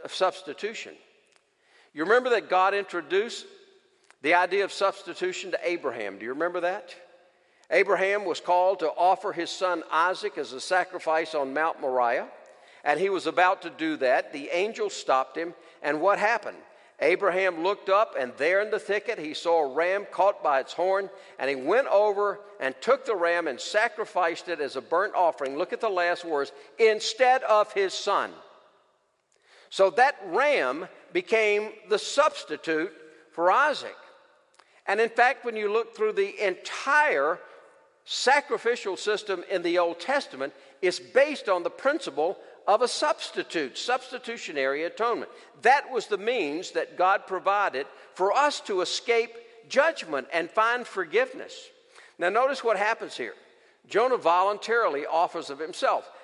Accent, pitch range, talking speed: American, 175-280 Hz, 155 wpm